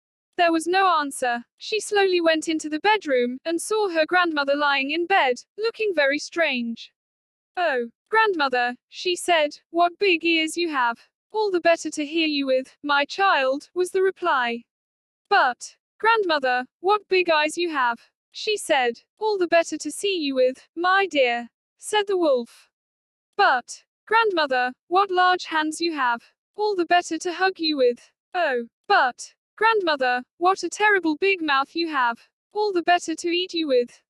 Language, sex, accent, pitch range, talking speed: Hindi, female, British, 285-380 Hz, 165 wpm